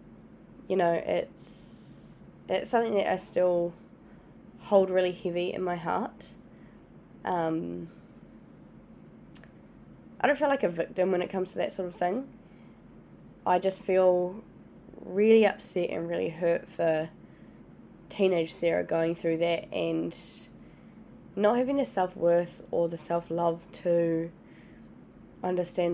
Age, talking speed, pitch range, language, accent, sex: 20-39, 125 wpm, 170-195 Hz, English, Australian, female